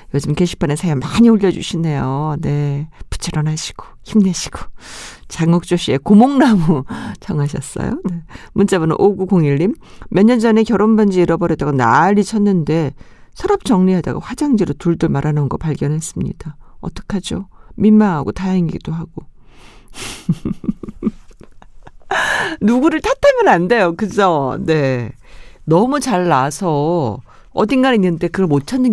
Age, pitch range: 50-69, 140-205 Hz